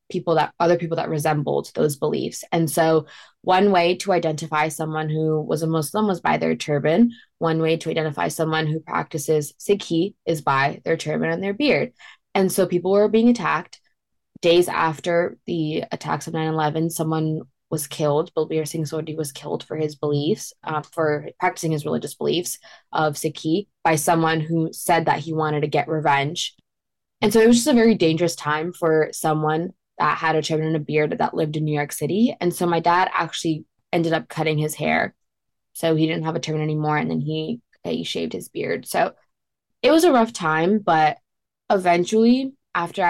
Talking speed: 190 wpm